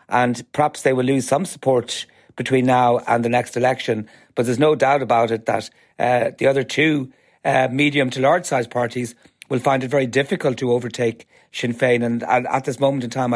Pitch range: 120-140 Hz